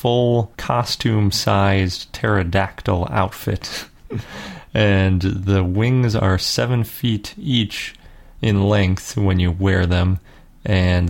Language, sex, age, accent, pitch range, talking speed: English, male, 30-49, American, 90-110 Hz, 105 wpm